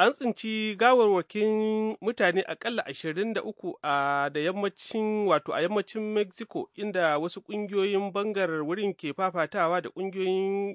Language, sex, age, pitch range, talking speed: English, male, 30-49, 140-195 Hz, 130 wpm